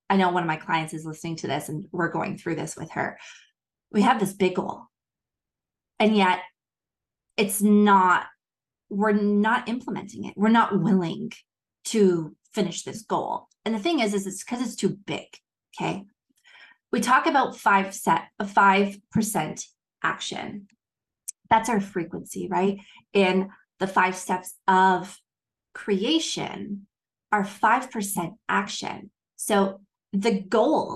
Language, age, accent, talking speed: English, 20-39, American, 140 wpm